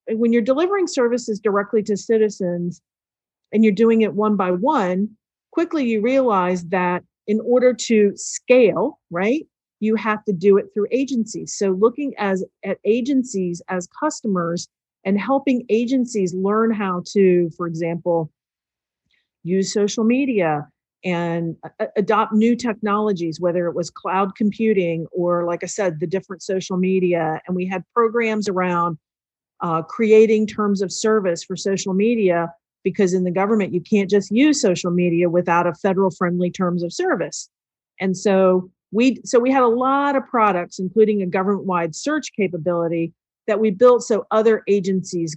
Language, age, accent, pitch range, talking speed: English, 40-59, American, 180-220 Hz, 155 wpm